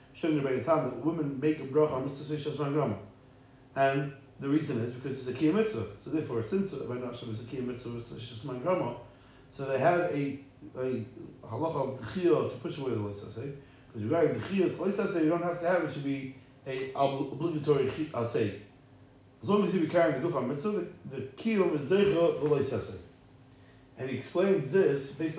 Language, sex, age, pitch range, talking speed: English, male, 40-59, 125-155 Hz, 180 wpm